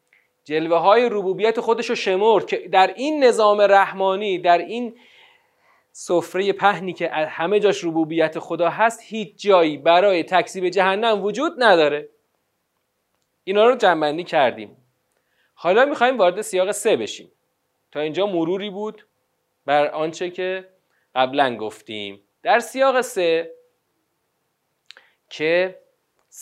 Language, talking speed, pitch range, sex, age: Persian, 115 wpm, 160-225 Hz, male, 40-59